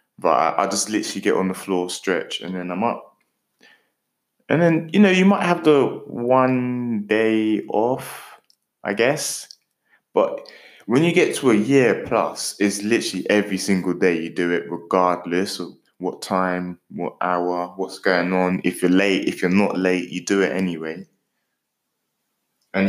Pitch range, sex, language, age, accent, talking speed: 95-125 Hz, male, English, 20-39, British, 165 wpm